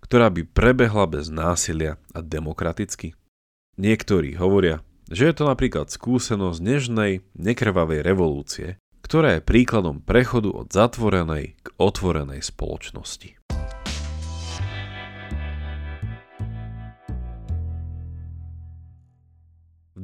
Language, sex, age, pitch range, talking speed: Slovak, male, 40-59, 80-115 Hz, 80 wpm